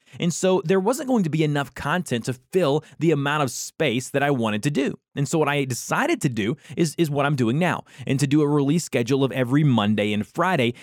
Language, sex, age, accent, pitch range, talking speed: English, male, 20-39, American, 125-160 Hz, 245 wpm